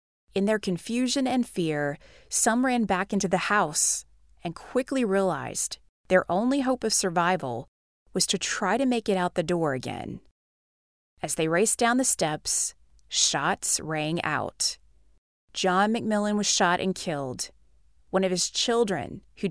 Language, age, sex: English, 30-49, female